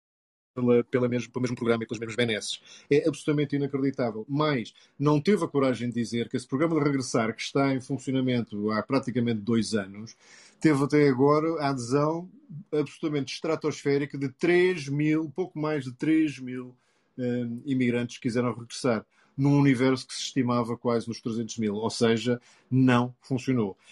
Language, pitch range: Portuguese, 120-155 Hz